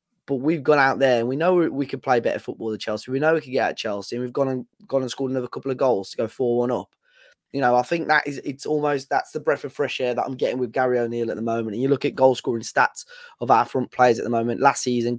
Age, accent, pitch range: 20-39, British, 115-135 Hz